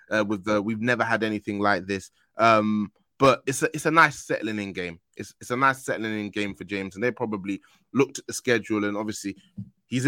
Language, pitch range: English, 105-125 Hz